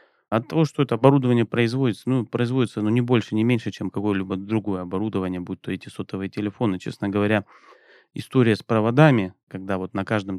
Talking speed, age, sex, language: 180 wpm, 20-39, male, Russian